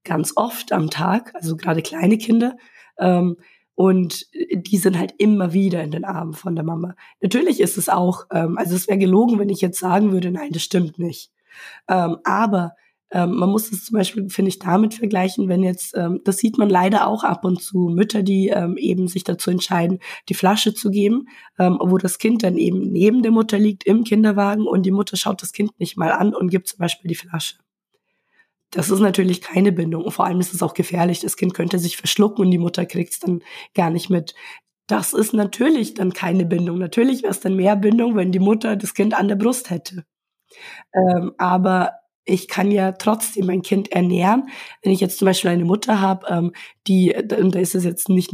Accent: German